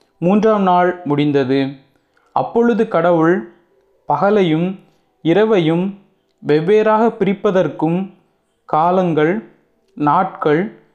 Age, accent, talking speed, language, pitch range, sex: 30-49, native, 60 wpm, Tamil, 160-195 Hz, male